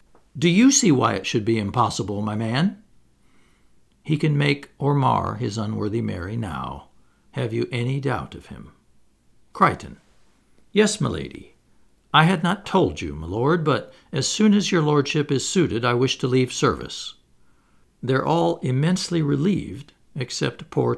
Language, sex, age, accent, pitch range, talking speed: English, male, 60-79, American, 115-170 Hz, 155 wpm